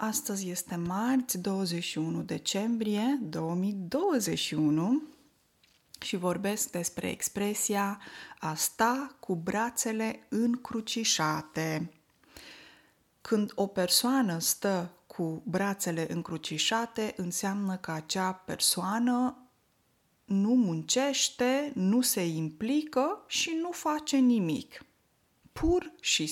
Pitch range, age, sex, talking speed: 180-250 Hz, 20-39, female, 85 wpm